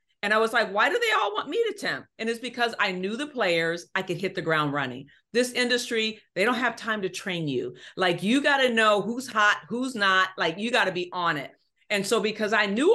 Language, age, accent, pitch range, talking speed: English, 40-59, American, 180-235 Hz, 245 wpm